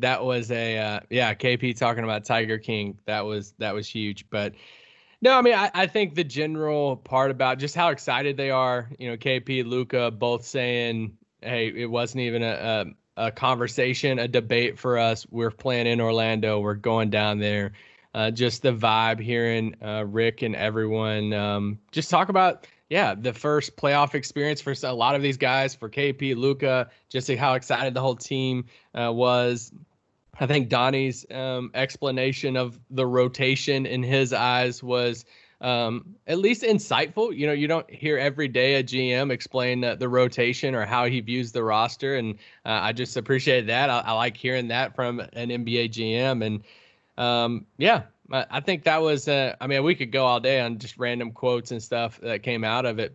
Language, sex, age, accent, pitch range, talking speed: English, male, 20-39, American, 115-135 Hz, 190 wpm